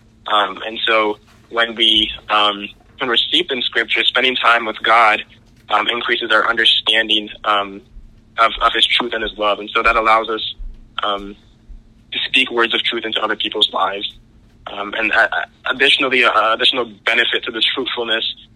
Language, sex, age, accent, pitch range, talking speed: English, male, 20-39, American, 110-120 Hz, 165 wpm